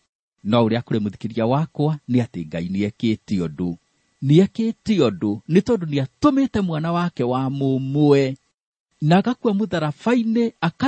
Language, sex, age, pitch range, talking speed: English, male, 50-69, 105-170 Hz, 145 wpm